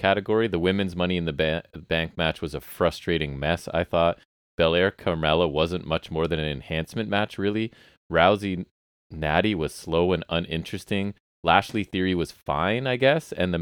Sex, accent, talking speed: male, American, 170 wpm